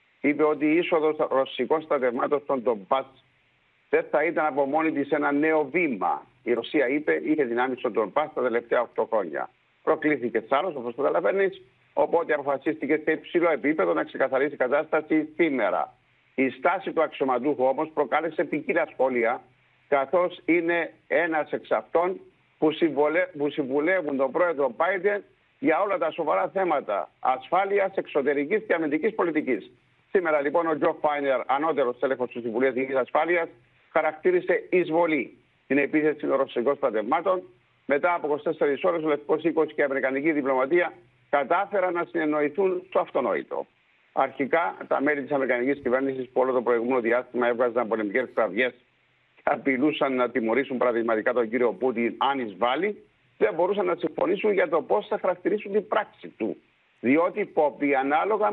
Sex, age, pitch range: male, 60-79, 130-170 Hz